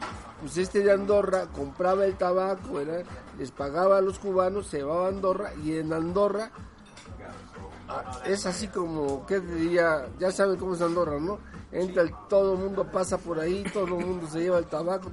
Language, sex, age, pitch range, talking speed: Spanish, male, 50-69, 160-190 Hz, 185 wpm